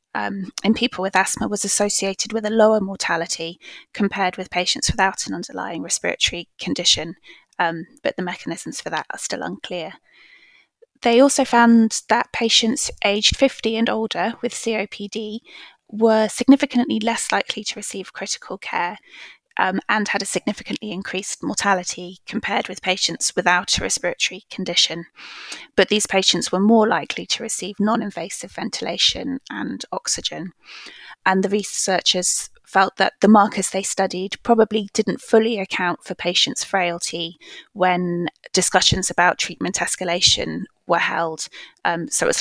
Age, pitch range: 20-39, 180-225 Hz